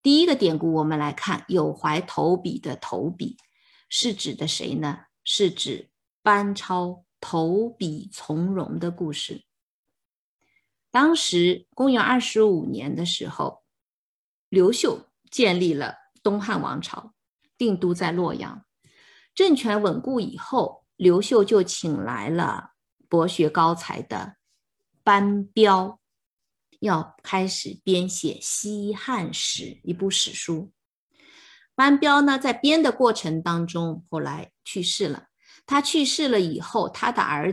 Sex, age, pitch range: female, 20-39, 170-250 Hz